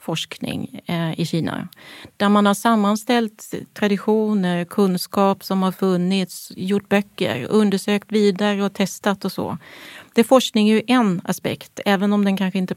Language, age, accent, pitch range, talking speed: English, 30-49, Swedish, 180-215 Hz, 145 wpm